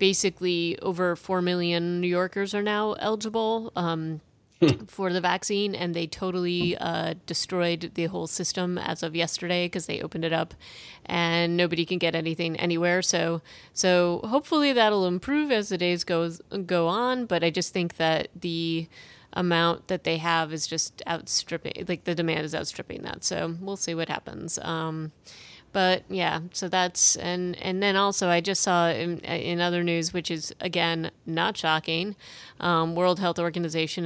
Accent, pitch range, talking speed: American, 165-180 Hz, 165 wpm